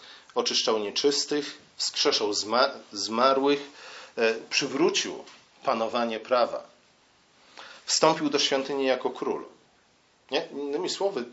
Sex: male